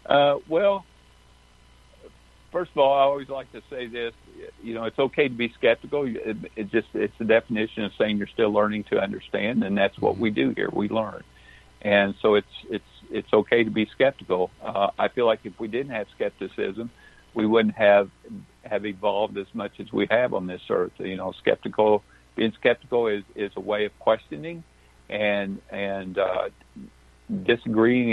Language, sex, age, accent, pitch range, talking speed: English, male, 60-79, American, 100-120 Hz, 180 wpm